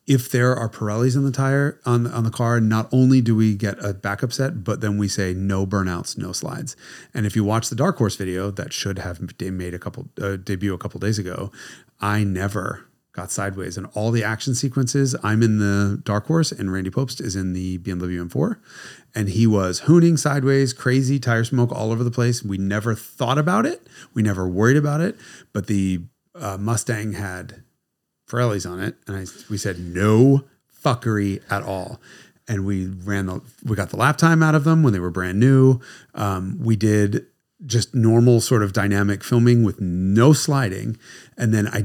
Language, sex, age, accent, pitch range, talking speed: English, male, 30-49, American, 100-130 Hz, 200 wpm